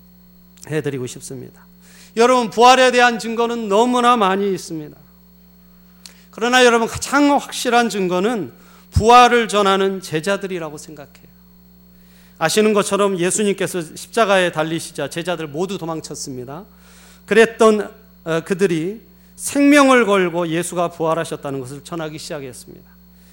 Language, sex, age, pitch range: Korean, male, 40-59, 140-210 Hz